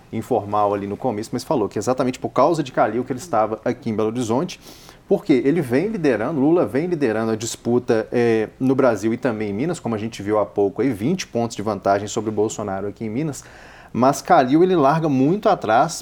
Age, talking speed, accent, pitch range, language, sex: 30-49, 215 wpm, Brazilian, 115-155 Hz, Portuguese, male